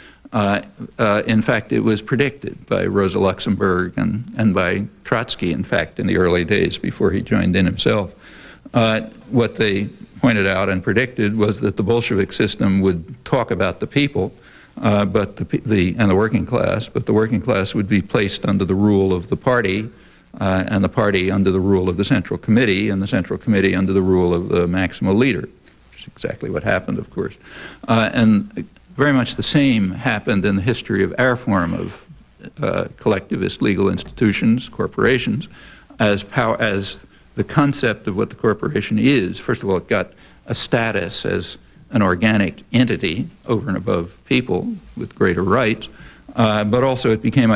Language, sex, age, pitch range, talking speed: English, male, 60-79, 95-115 Hz, 180 wpm